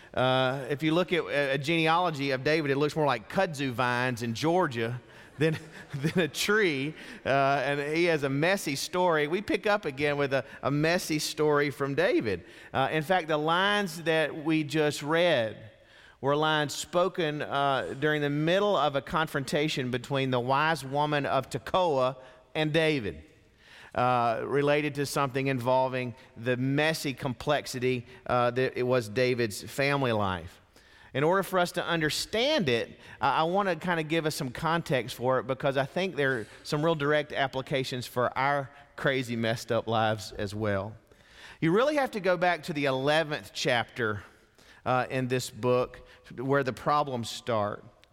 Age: 40-59